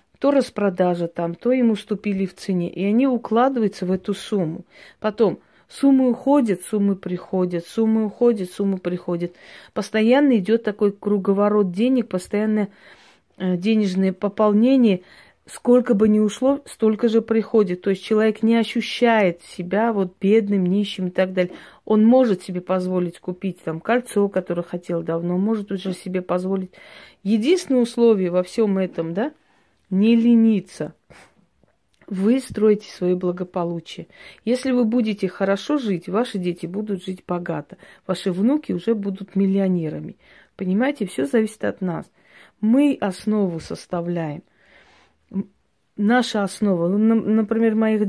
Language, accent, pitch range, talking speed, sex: Russian, native, 185-225 Hz, 130 wpm, female